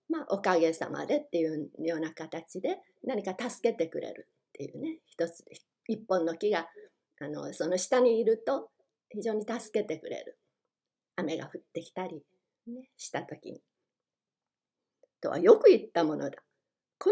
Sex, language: female, Japanese